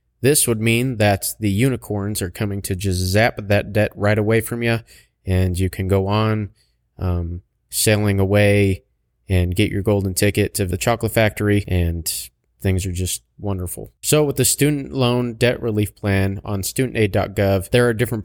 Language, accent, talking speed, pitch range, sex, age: English, American, 170 wpm, 95-115 Hz, male, 20-39